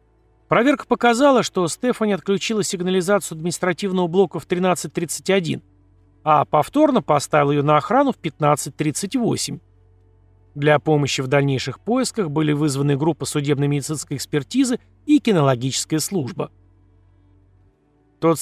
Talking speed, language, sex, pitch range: 105 wpm, Russian, male, 140-195 Hz